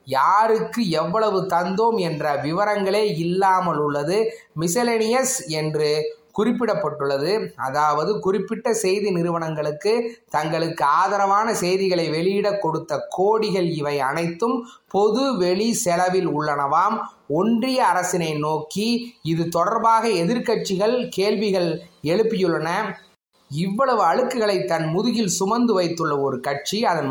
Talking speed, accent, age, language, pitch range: 95 wpm, native, 20-39, Tamil, 165-220 Hz